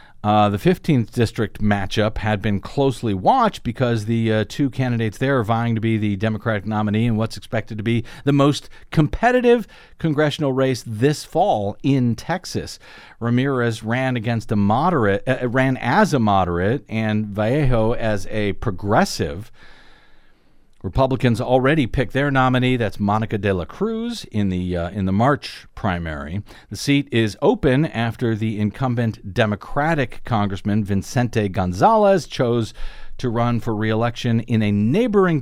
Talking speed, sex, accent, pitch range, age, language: 145 wpm, male, American, 105-130 Hz, 50-69, English